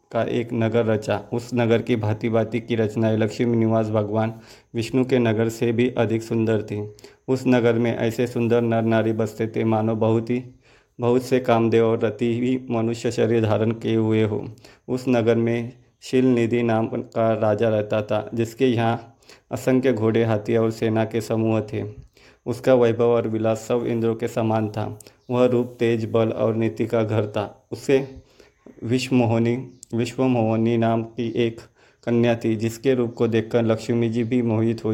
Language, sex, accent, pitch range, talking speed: Hindi, male, native, 110-120 Hz, 170 wpm